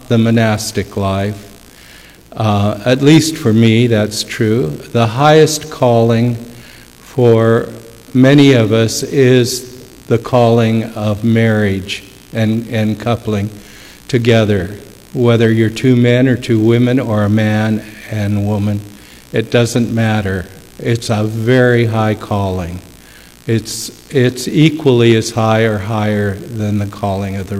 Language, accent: English, American